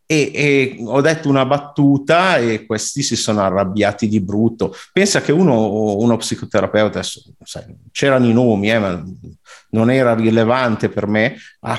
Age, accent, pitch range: 50-69, native, 110-140 Hz